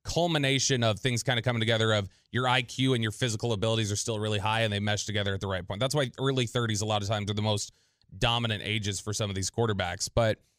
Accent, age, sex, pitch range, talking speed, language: American, 30-49, male, 110-130 Hz, 255 wpm, English